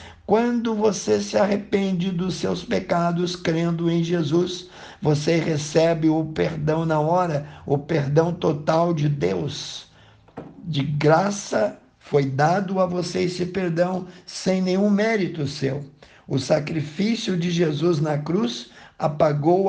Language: Portuguese